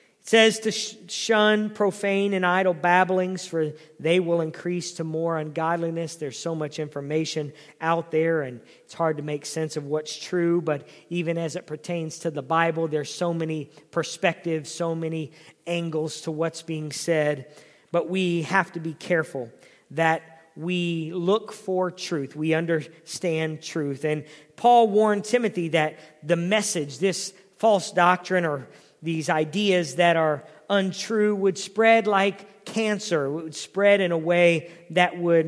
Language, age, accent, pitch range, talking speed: English, 40-59, American, 160-195 Hz, 150 wpm